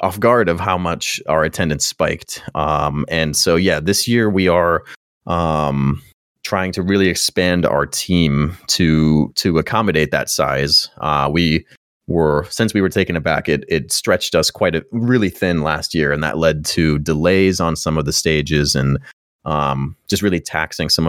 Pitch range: 75-95 Hz